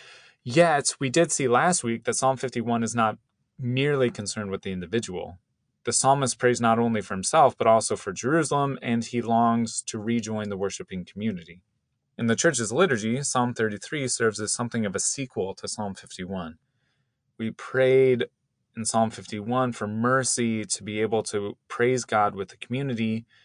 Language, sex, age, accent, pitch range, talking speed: English, male, 30-49, American, 105-130 Hz, 170 wpm